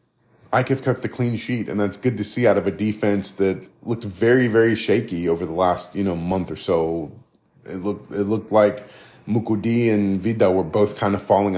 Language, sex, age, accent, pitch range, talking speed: English, male, 30-49, American, 95-115 Hz, 210 wpm